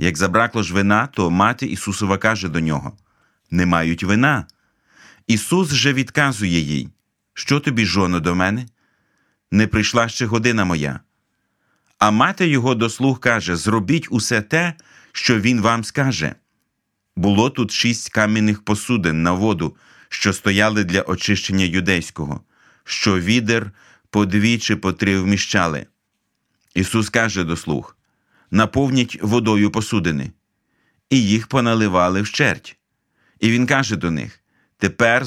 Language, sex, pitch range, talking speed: Ukrainian, male, 95-115 Hz, 130 wpm